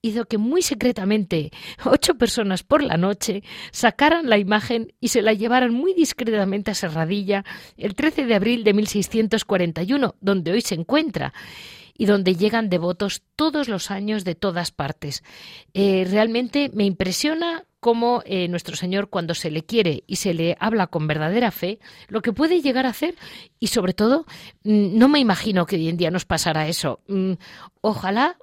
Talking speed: 170 wpm